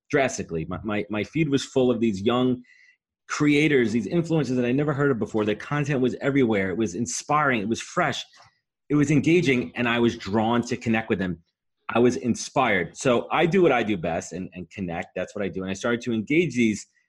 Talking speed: 220 wpm